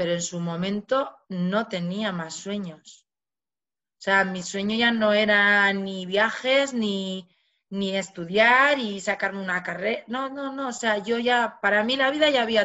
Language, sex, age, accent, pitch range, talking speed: Spanish, female, 30-49, Spanish, 185-235 Hz, 175 wpm